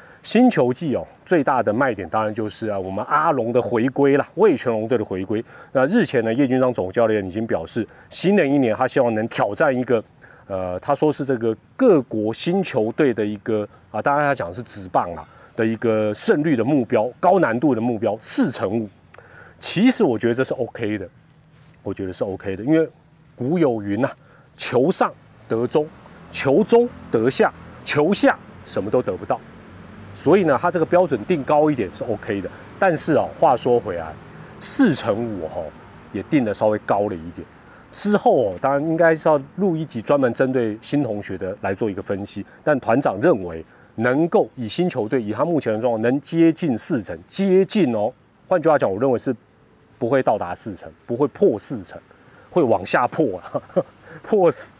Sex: male